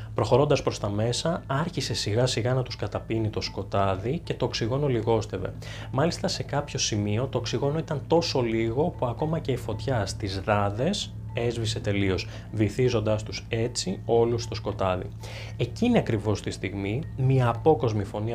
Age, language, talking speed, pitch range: 20-39, Greek, 155 wpm, 105-130 Hz